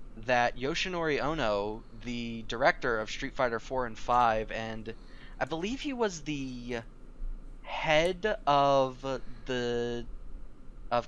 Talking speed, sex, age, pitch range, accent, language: 115 wpm, male, 20-39, 120-150 Hz, American, English